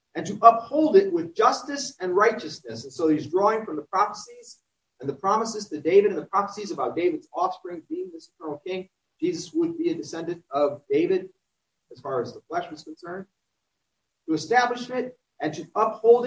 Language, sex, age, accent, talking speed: English, male, 40-59, American, 185 wpm